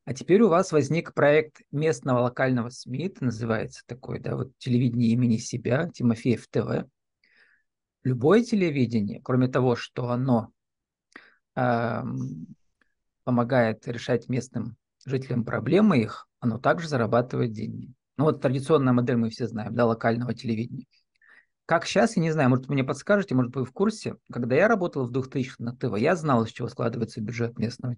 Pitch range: 120-145 Hz